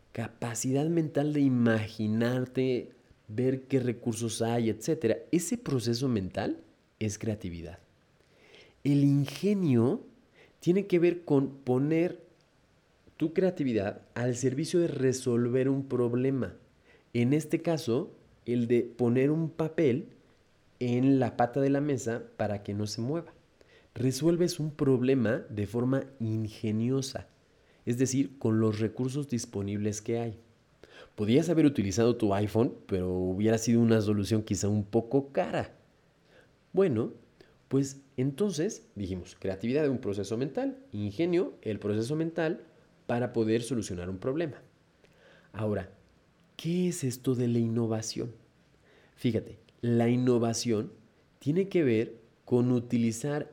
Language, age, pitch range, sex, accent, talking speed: Spanish, 30-49, 110-140 Hz, male, Mexican, 120 wpm